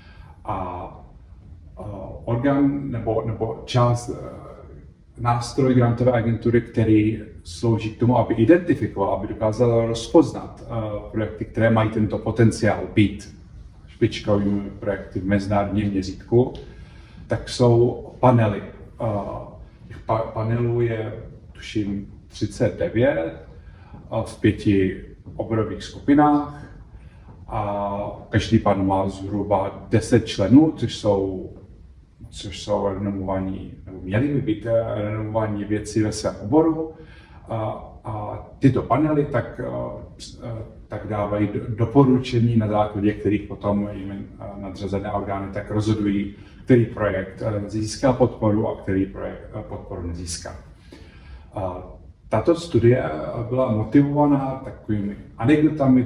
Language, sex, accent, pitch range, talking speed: Czech, male, native, 95-115 Hz, 95 wpm